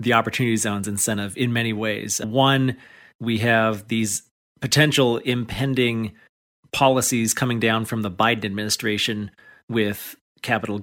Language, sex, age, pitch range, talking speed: English, male, 30-49, 110-125 Hz, 120 wpm